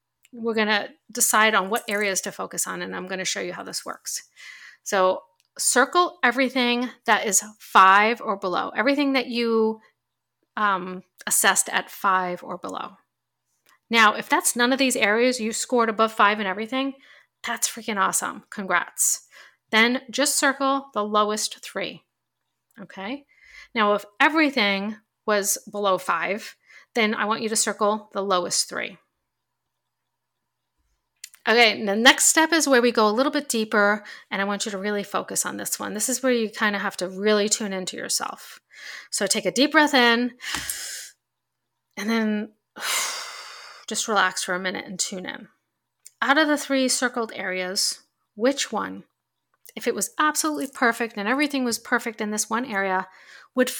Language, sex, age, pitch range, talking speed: English, female, 40-59, 205-255 Hz, 165 wpm